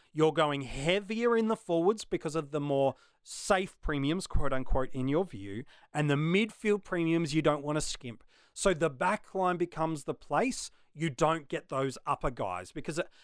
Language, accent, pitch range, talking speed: English, Australian, 135-190 Hz, 175 wpm